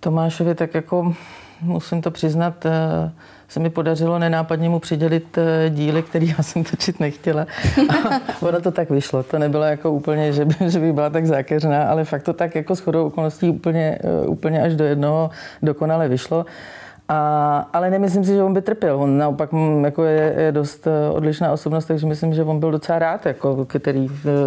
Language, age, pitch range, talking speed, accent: Czech, 40-59, 145-165 Hz, 175 wpm, native